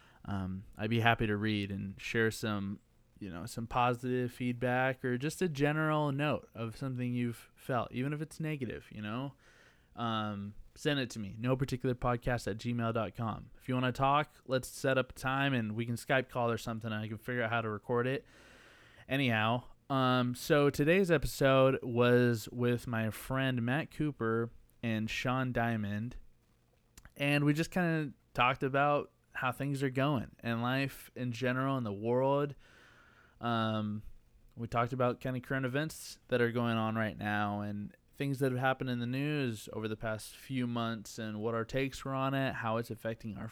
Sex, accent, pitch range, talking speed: male, American, 110-135 Hz, 185 wpm